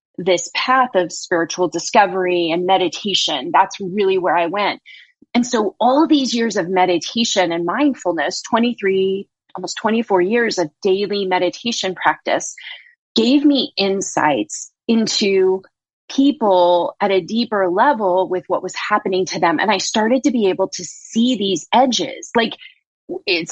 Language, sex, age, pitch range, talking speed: English, female, 30-49, 180-250 Hz, 145 wpm